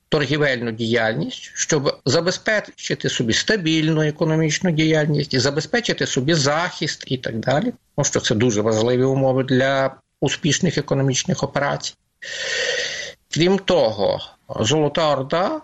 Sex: male